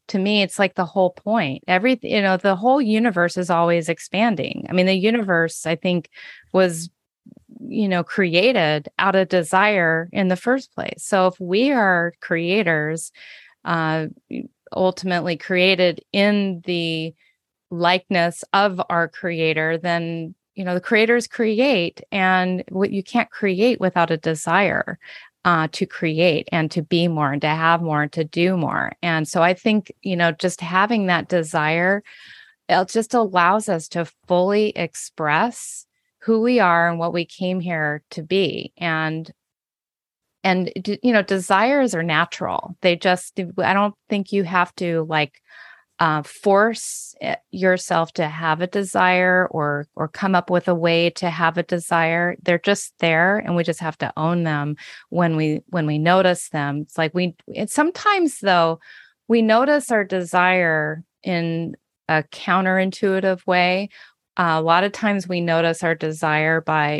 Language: English